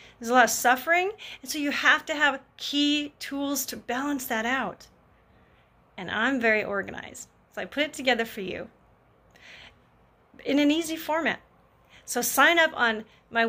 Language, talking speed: English, 165 wpm